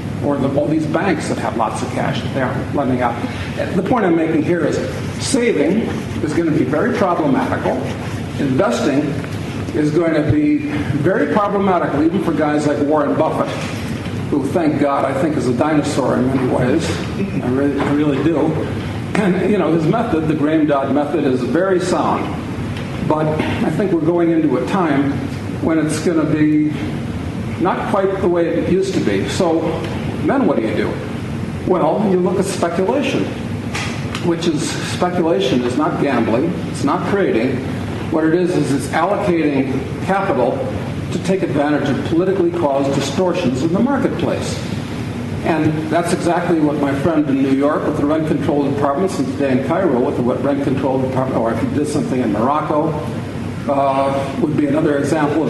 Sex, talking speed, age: male, 175 wpm, 50-69